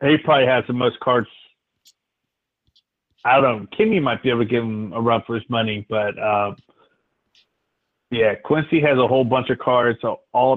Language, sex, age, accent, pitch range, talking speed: English, male, 30-49, American, 110-135 Hz, 180 wpm